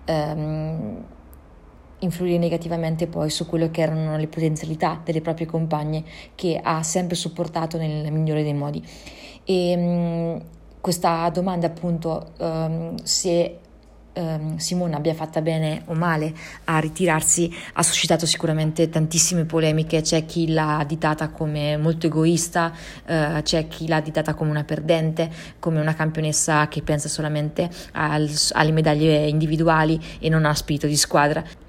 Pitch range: 155-165 Hz